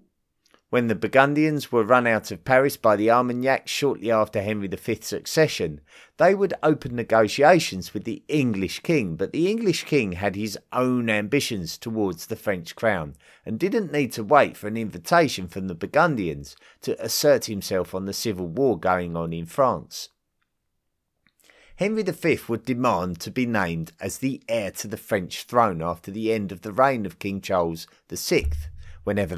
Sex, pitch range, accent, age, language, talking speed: male, 90-135 Hz, British, 30-49, English, 170 wpm